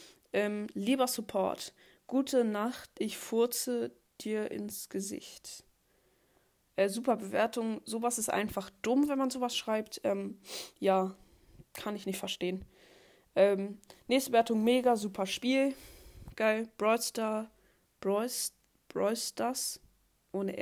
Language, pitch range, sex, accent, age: Japanese, 195-230 Hz, female, German, 20-39